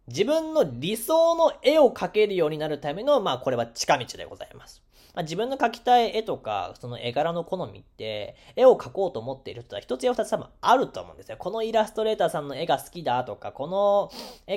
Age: 20-39